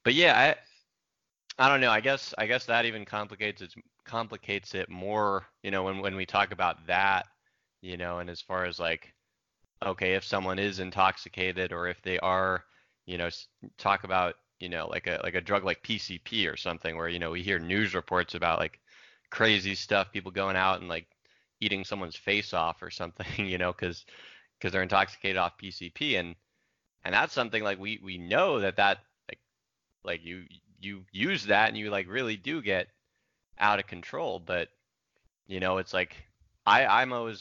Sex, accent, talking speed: male, American, 190 wpm